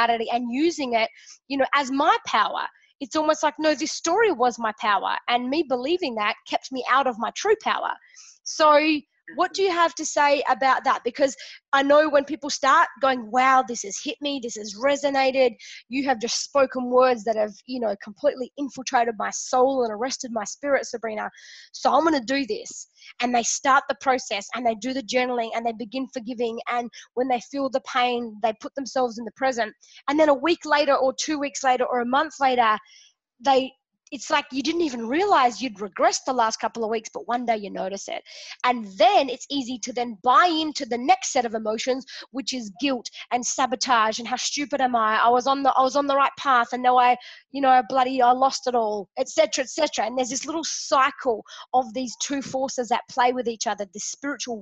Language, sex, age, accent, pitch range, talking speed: English, female, 20-39, Australian, 240-285 Hz, 215 wpm